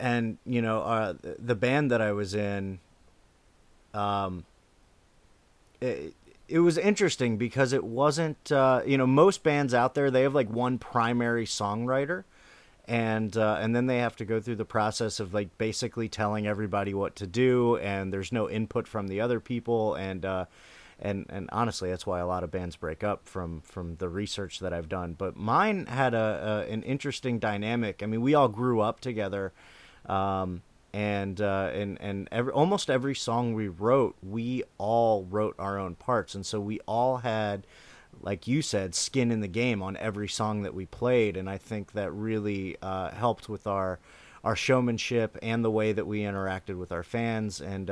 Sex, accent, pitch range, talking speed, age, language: male, American, 100-120 Hz, 185 wpm, 30-49, English